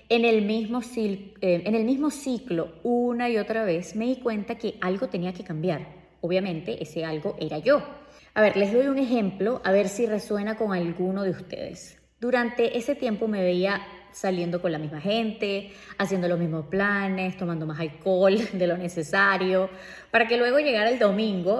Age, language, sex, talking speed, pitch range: 20-39, Spanish, female, 180 wpm, 190-245 Hz